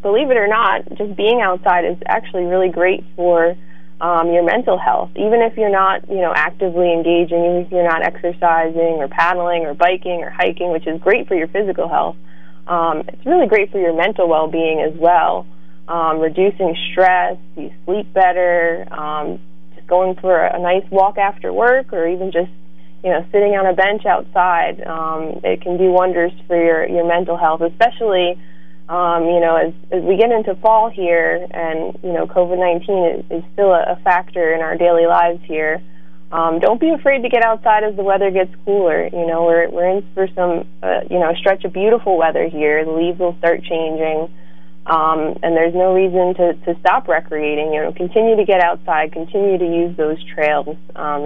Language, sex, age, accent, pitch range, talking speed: English, female, 20-39, American, 160-185 Hz, 195 wpm